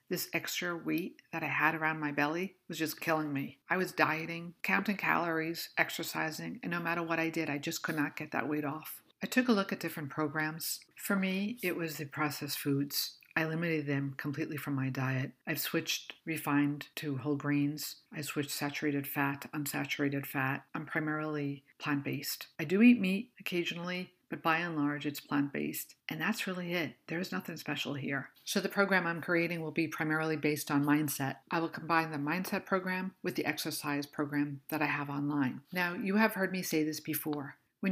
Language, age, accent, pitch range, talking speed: English, 50-69, American, 145-180 Hz, 195 wpm